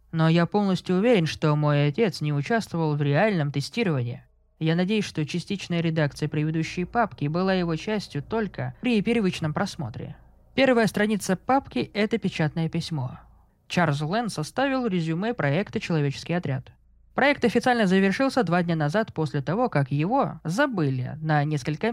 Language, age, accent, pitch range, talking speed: Russian, 20-39, native, 155-215 Hz, 140 wpm